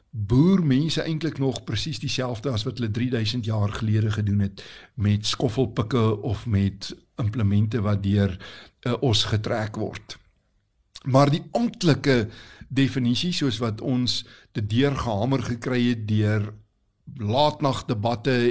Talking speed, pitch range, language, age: 130 wpm, 110-140 Hz, Swedish, 60-79